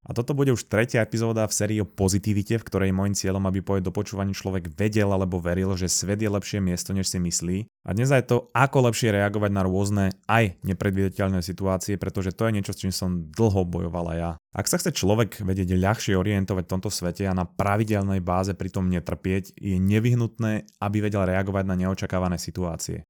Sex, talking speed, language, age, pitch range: male, 195 wpm, Slovak, 20-39, 90-105 Hz